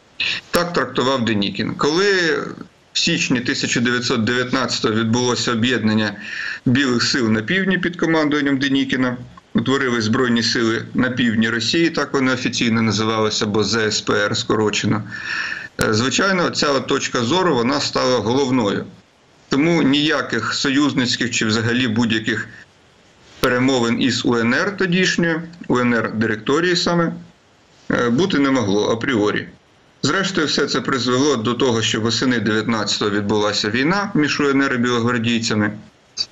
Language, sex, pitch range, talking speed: Ukrainian, male, 115-140 Hz, 115 wpm